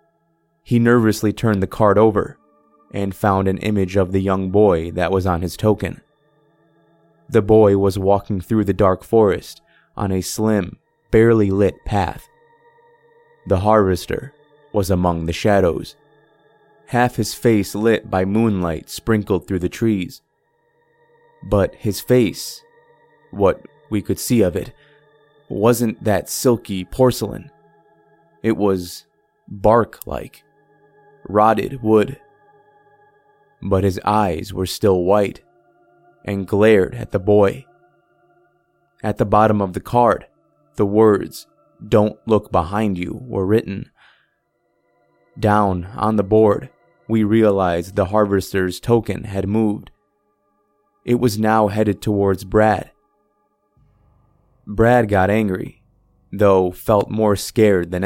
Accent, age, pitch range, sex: American, 20-39, 95-120 Hz, male